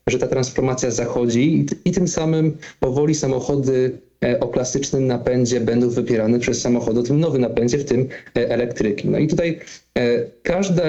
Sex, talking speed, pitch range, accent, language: male, 175 wpm, 120-145 Hz, native, Polish